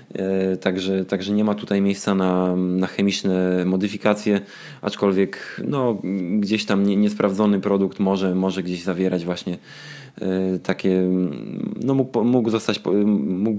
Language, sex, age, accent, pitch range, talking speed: Polish, male, 20-39, native, 95-105 Hz, 105 wpm